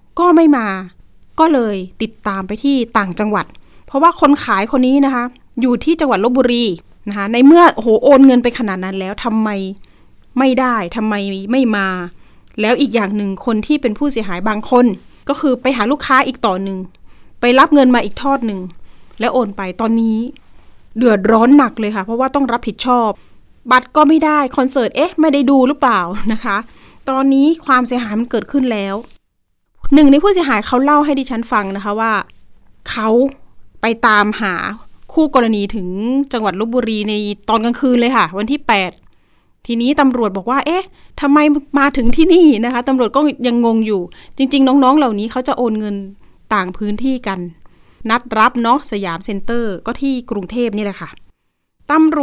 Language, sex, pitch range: Thai, female, 210-275 Hz